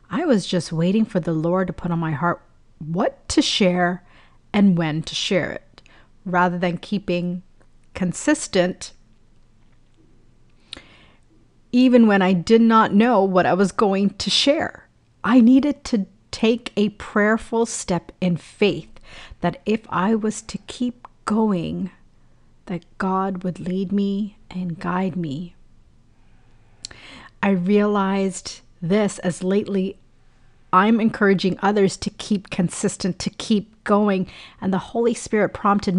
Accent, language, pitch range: American, English, 175-215 Hz